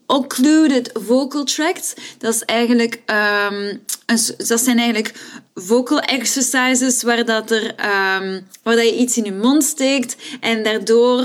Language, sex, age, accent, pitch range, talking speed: Dutch, female, 20-39, Dutch, 220-280 Hz, 125 wpm